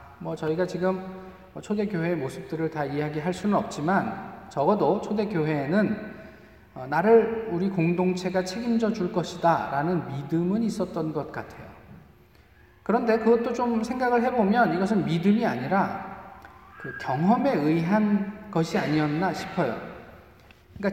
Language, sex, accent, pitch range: Korean, male, native, 155-200 Hz